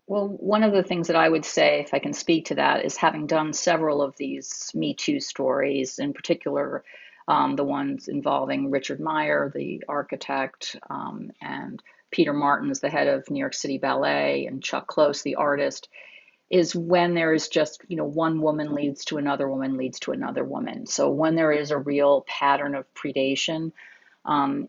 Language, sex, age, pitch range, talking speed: English, female, 40-59, 140-190 Hz, 190 wpm